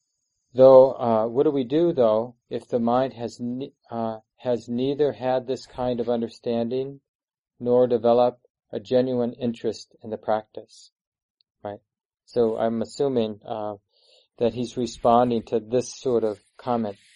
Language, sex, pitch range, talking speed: English, male, 110-125 Hz, 145 wpm